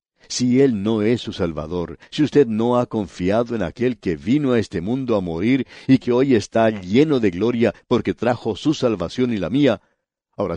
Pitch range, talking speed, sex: 100-125 Hz, 200 wpm, male